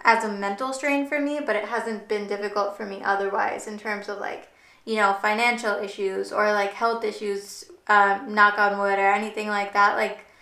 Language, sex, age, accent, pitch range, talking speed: English, female, 20-39, American, 200-225 Hz, 200 wpm